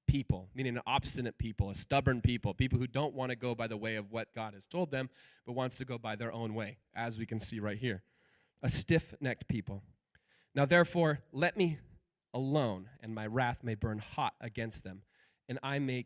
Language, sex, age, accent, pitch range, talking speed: English, male, 20-39, American, 110-160 Hz, 210 wpm